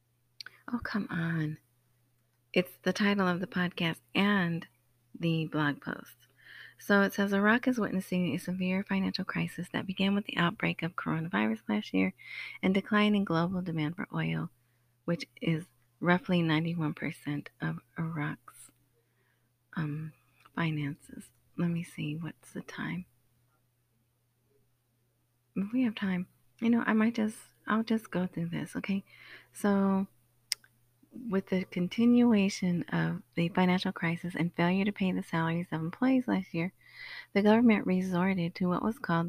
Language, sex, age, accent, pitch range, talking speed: English, female, 30-49, American, 125-200 Hz, 140 wpm